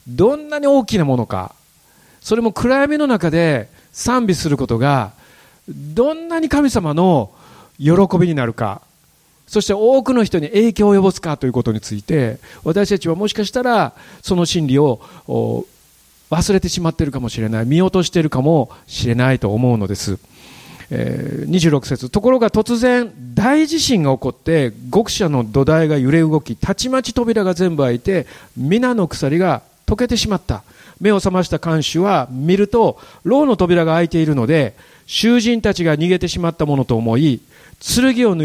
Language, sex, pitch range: Japanese, male, 135-215 Hz